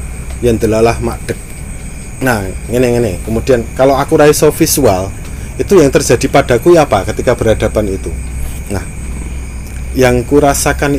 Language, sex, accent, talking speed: Indonesian, male, native, 115 wpm